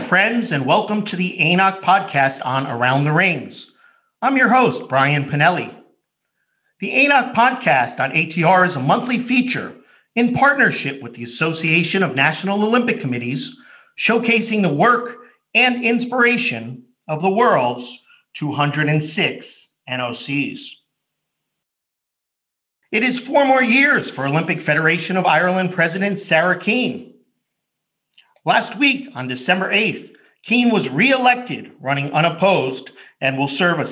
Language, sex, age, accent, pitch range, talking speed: English, male, 50-69, American, 150-240 Hz, 125 wpm